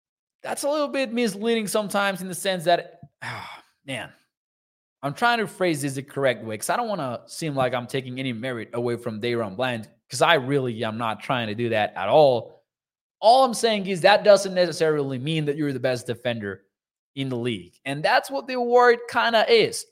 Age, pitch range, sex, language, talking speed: 20-39, 130-205 Hz, male, English, 210 wpm